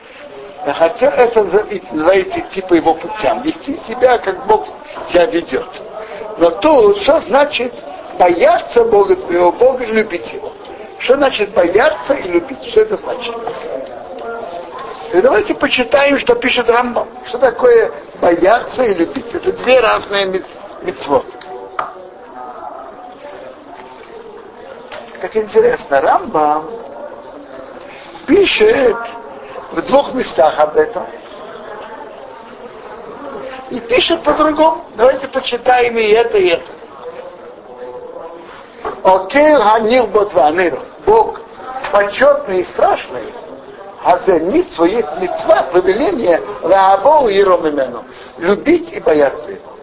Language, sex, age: Russian, male, 60-79